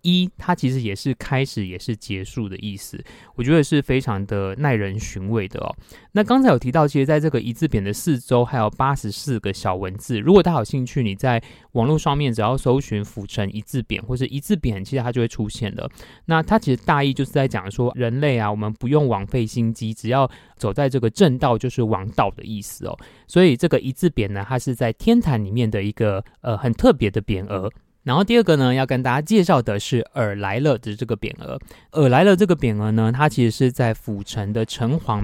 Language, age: Chinese, 20-39